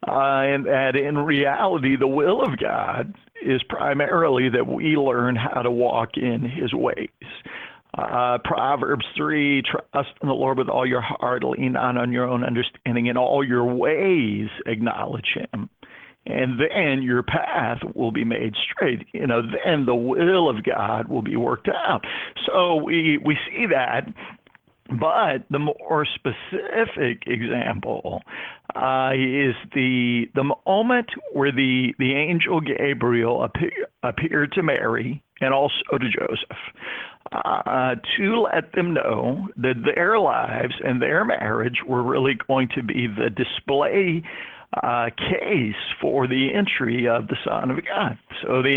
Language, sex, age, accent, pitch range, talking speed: English, male, 50-69, American, 125-145 Hz, 150 wpm